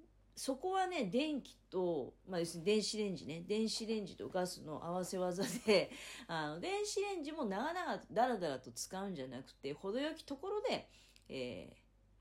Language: Japanese